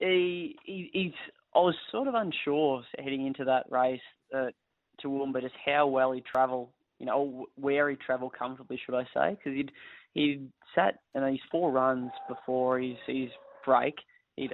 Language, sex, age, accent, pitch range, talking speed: English, male, 20-39, Australian, 130-140 Hz, 180 wpm